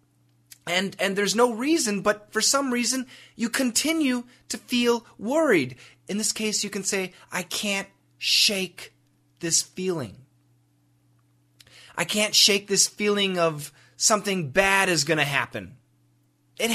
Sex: male